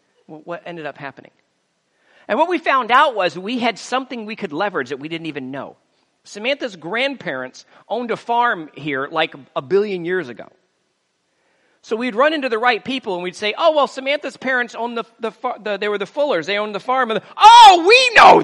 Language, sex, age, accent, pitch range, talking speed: English, male, 40-59, American, 180-260 Hz, 200 wpm